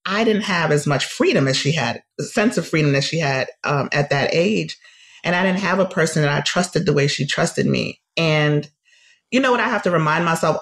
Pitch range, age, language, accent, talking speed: 145-185 Hz, 30-49, English, American, 245 wpm